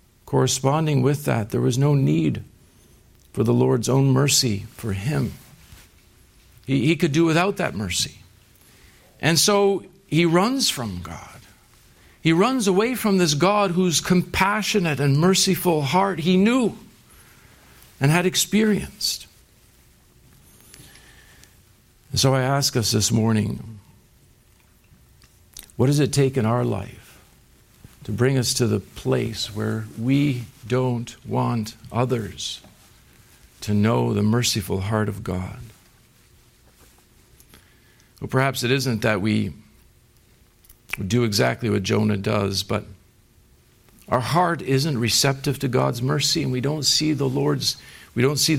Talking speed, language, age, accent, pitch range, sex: 125 wpm, English, 60-79, American, 110-150 Hz, male